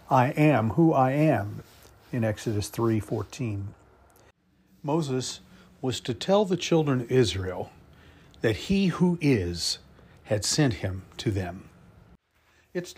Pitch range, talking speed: 100-135 Hz, 125 wpm